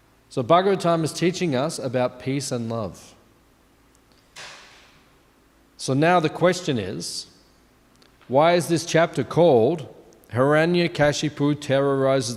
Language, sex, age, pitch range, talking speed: English, male, 40-59, 125-160 Hz, 105 wpm